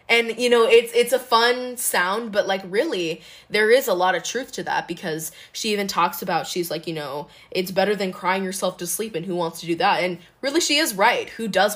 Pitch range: 170-195 Hz